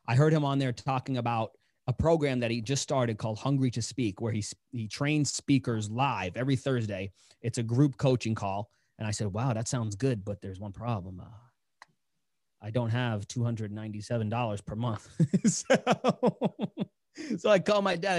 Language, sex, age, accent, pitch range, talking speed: English, male, 30-49, American, 110-140 Hz, 180 wpm